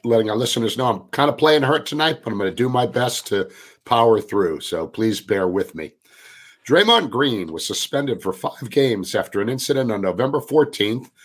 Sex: male